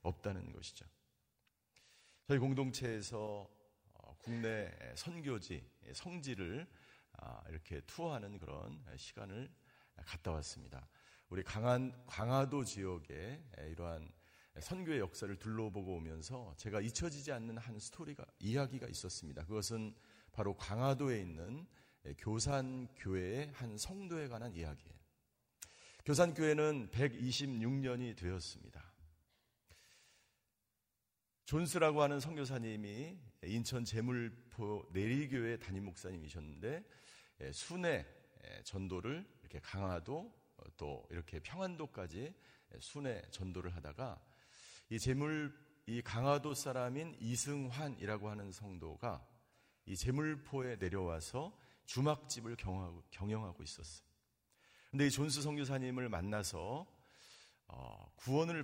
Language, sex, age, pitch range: Korean, male, 40-59, 90-135 Hz